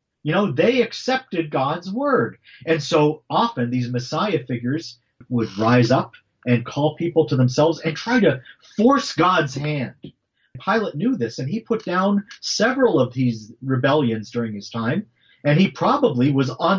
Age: 40-59